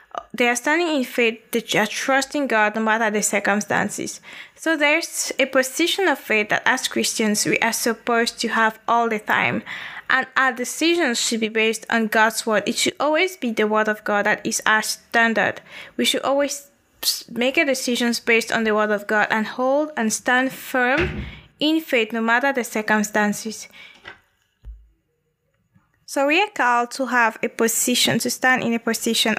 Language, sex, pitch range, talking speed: English, female, 220-270 Hz, 180 wpm